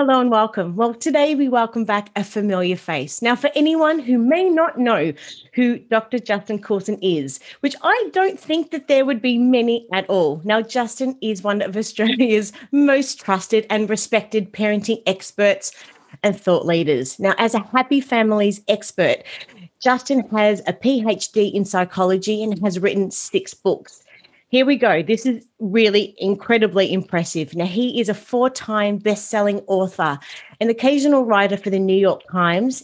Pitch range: 195-250 Hz